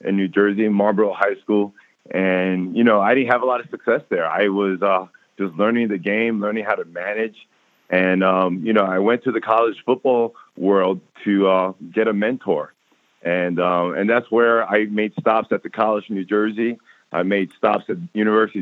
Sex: male